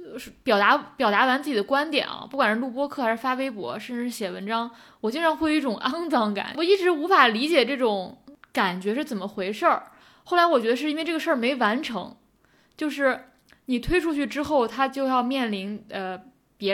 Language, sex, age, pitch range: Chinese, female, 20-39, 215-285 Hz